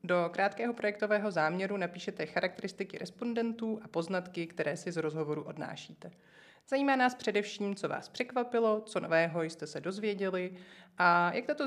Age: 30-49